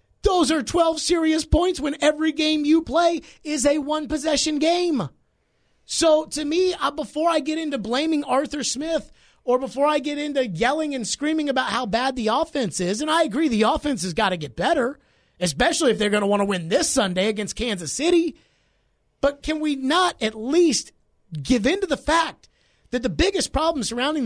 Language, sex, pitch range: English, male, 225-315 Hz